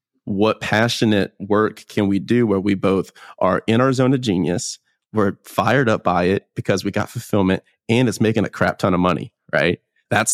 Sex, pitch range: male, 100-125 Hz